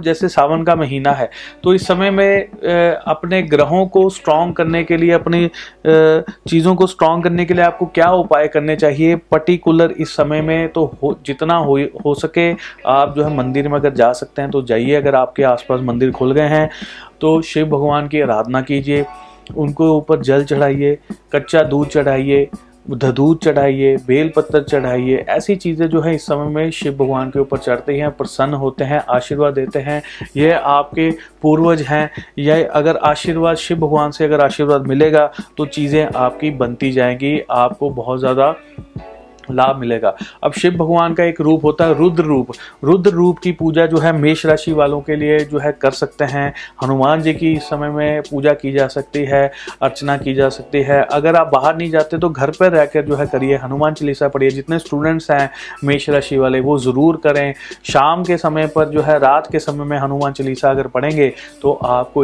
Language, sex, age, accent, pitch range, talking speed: Hindi, male, 30-49, native, 135-160 Hz, 190 wpm